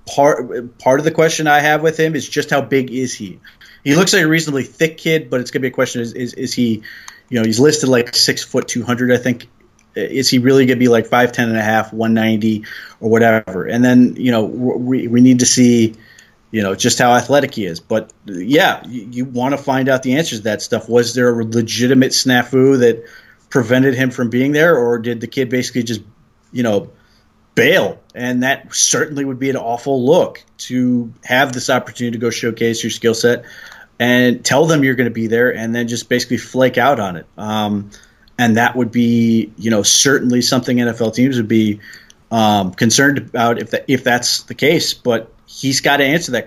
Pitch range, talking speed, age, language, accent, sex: 115-135 Hz, 220 wpm, 30-49, English, American, male